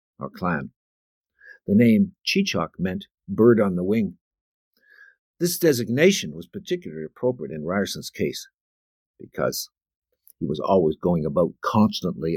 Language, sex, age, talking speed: English, male, 60-79, 120 wpm